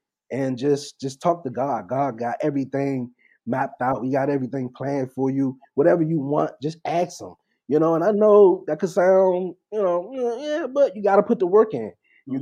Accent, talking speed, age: American, 205 wpm, 30-49